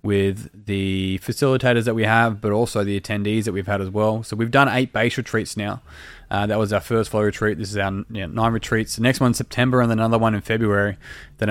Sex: male